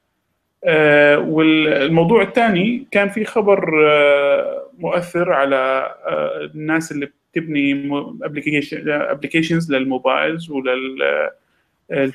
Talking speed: 90 wpm